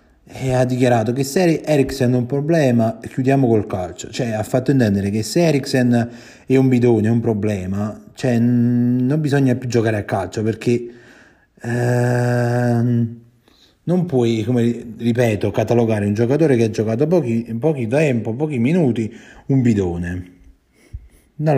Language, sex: Italian, male